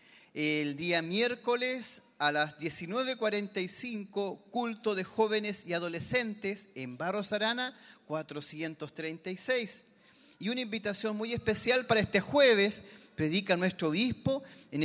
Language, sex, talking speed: Spanish, male, 110 wpm